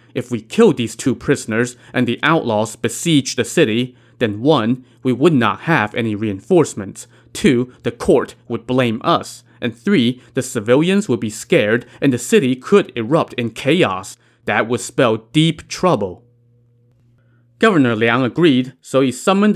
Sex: male